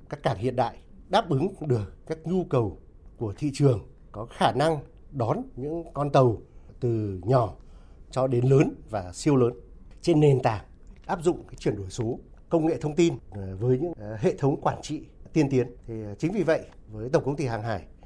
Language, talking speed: Vietnamese, 195 wpm